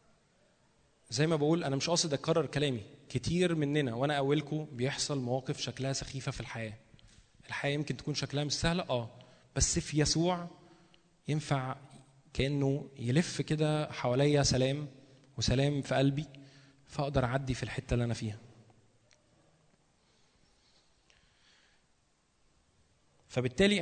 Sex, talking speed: male, 115 wpm